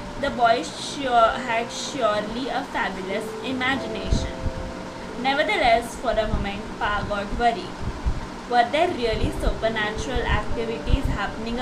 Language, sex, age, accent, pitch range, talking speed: English, female, 20-39, Indian, 220-270 Hz, 110 wpm